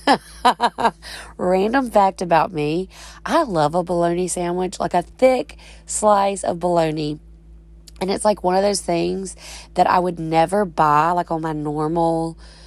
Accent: American